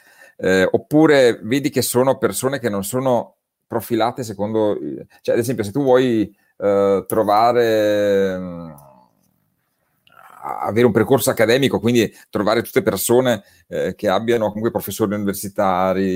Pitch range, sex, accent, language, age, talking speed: 95-120 Hz, male, native, Italian, 40-59, 125 wpm